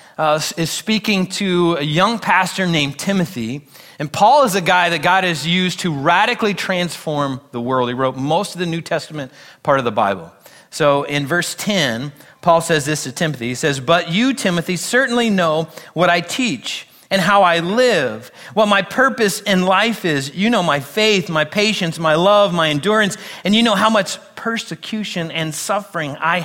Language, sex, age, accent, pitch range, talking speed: English, male, 40-59, American, 135-190 Hz, 185 wpm